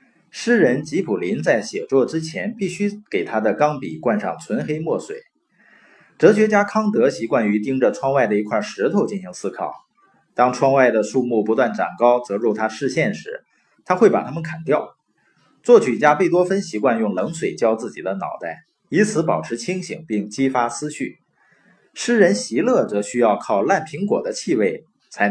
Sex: male